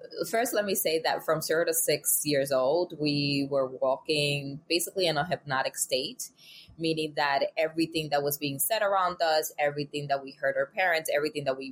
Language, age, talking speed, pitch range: English, 20-39, 190 wpm, 140-170 Hz